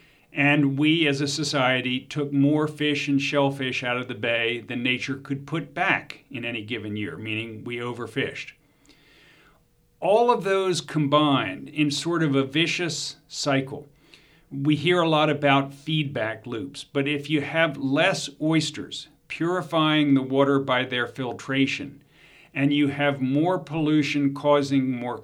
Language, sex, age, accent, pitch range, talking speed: English, male, 50-69, American, 130-150 Hz, 145 wpm